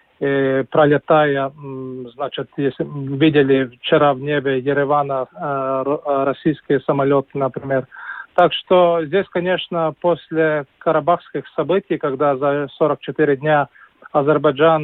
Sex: male